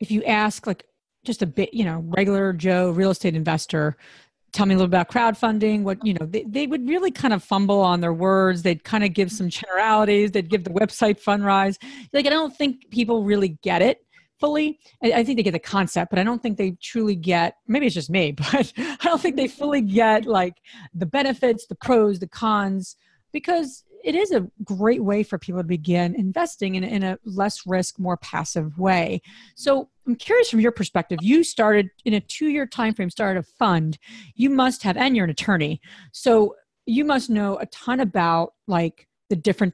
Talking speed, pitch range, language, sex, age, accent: 210 wpm, 180-240 Hz, English, female, 40-59, American